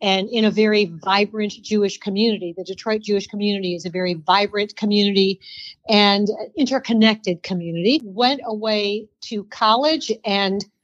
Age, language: 50-69, English